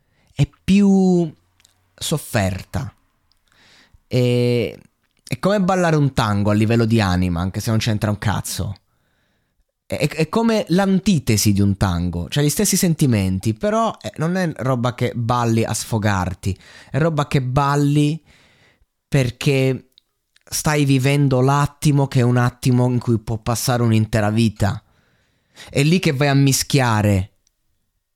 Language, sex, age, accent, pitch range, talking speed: Italian, male, 20-39, native, 115-160 Hz, 130 wpm